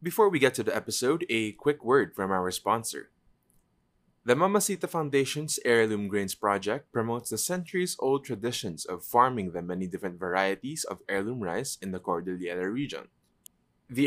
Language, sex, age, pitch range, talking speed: English, male, 20-39, 100-130 Hz, 155 wpm